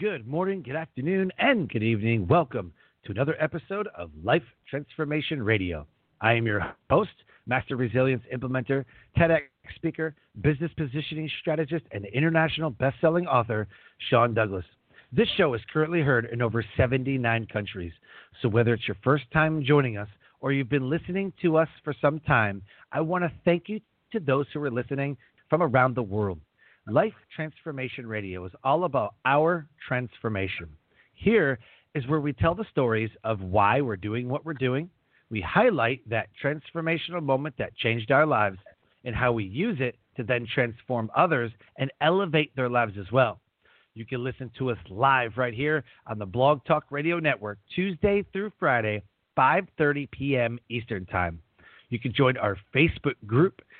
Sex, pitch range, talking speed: male, 115-155 Hz, 165 wpm